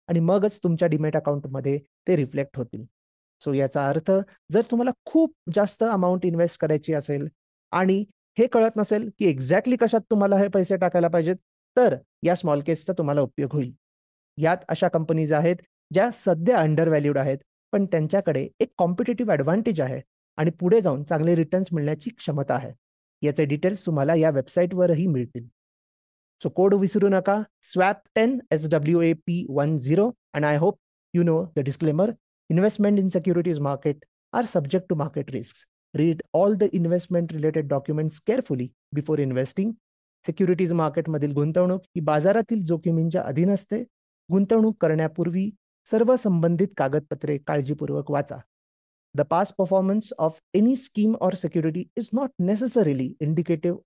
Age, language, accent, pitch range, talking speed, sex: 30-49, Marathi, native, 150-195 Hz, 135 wpm, male